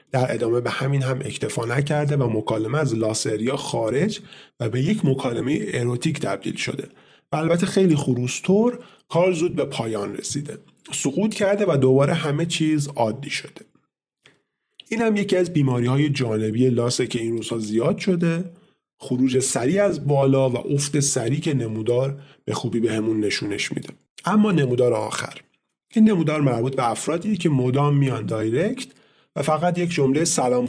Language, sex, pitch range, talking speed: Persian, male, 125-170 Hz, 155 wpm